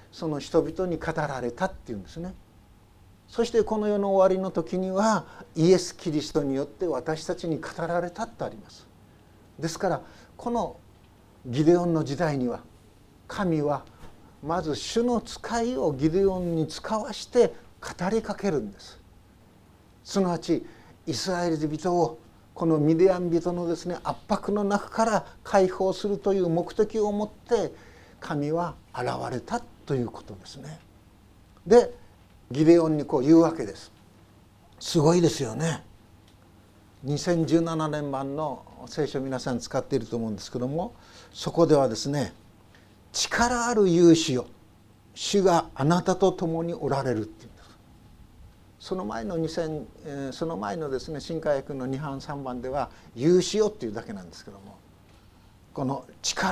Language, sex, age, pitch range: Japanese, male, 50-69, 110-180 Hz